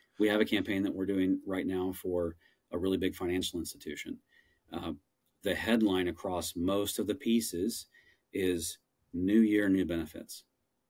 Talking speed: 155 wpm